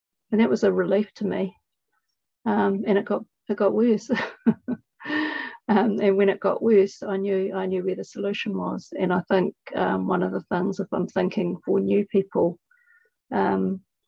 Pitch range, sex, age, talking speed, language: 185-225 Hz, female, 40-59, 185 wpm, English